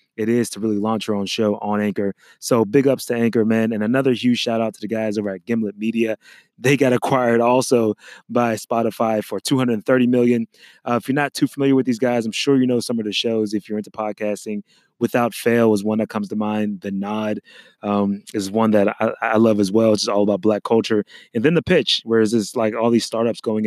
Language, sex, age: English, male, 20-39